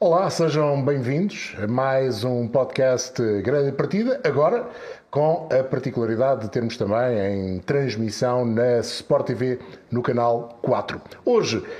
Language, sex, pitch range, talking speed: Portuguese, male, 115-150 Hz, 125 wpm